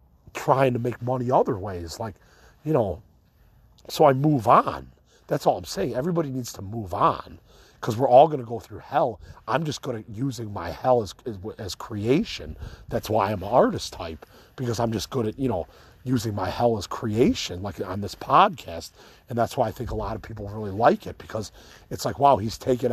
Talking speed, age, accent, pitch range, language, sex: 210 wpm, 40-59, American, 105-130 Hz, English, male